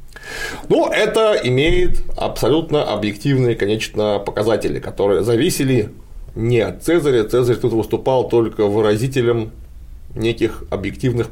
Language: Russian